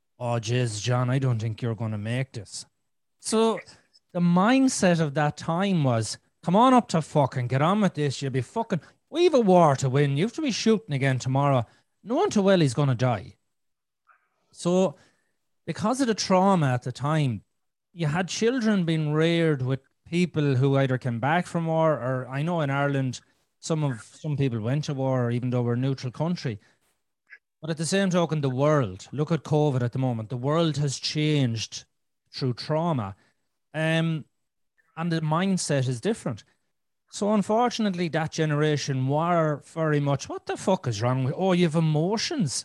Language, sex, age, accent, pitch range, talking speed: English, male, 30-49, Irish, 135-215 Hz, 185 wpm